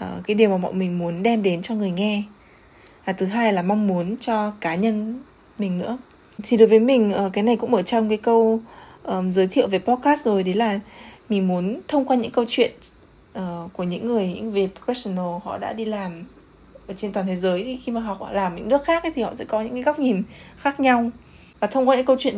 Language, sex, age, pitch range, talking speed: Vietnamese, female, 20-39, 195-240 Hz, 240 wpm